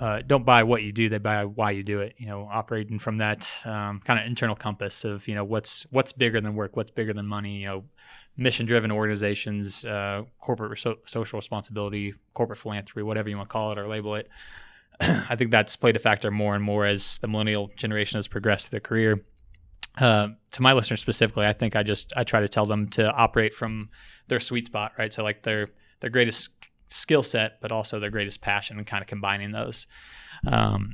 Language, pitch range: English, 105-115 Hz